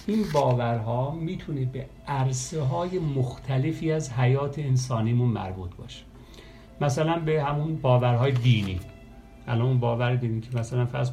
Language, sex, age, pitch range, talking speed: Persian, male, 50-69, 120-140 Hz, 140 wpm